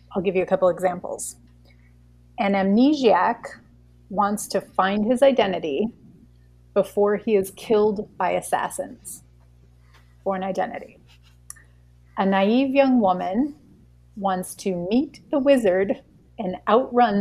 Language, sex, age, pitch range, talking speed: English, female, 30-49, 185-230 Hz, 115 wpm